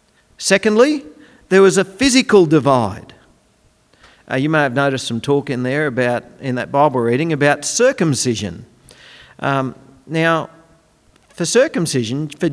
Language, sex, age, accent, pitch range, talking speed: English, male, 50-69, Australian, 135-200 Hz, 130 wpm